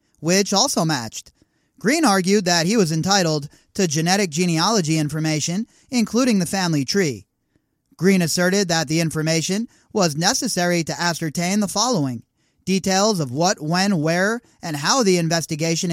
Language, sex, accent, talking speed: English, male, American, 140 wpm